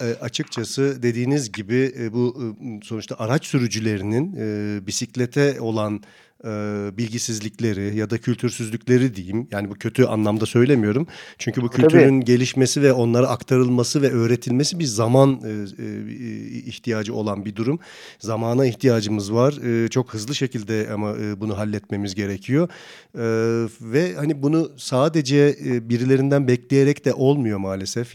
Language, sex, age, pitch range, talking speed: Turkish, male, 40-59, 110-135 Hz, 115 wpm